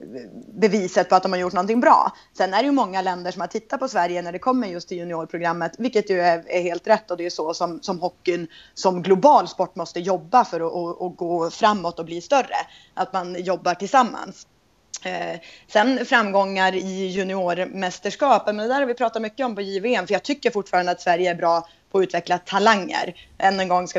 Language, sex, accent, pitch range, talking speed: Swedish, female, native, 170-195 Hz, 215 wpm